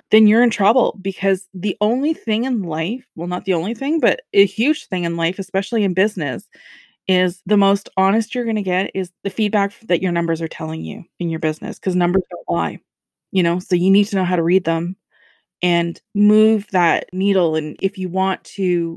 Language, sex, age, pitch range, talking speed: English, female, 20-39, 180-215 Hz, 215 wpm